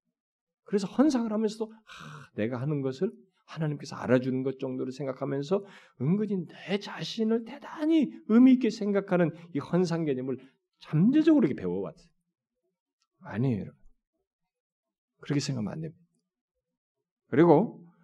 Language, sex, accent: Korean, male, native